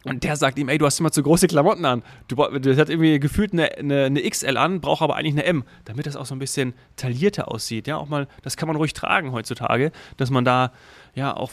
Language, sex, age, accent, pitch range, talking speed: German, male, 30-49, German, 125-155 Hz, 255 wpm